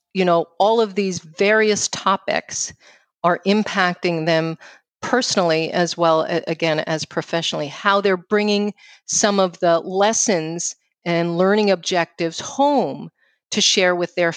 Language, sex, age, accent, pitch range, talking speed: English, female, 40-59, American, 165-200 Hz, 130 wpm